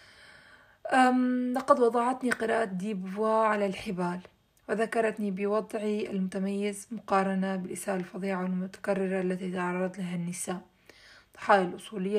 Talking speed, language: 95 wpm, Arabic